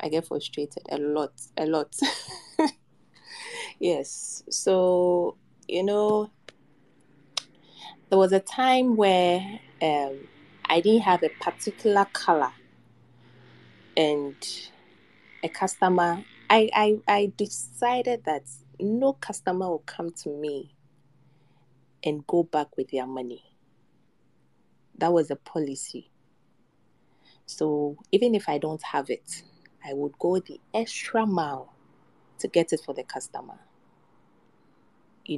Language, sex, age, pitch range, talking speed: English, female, 20-39, 145-200 Hz, 115 wpm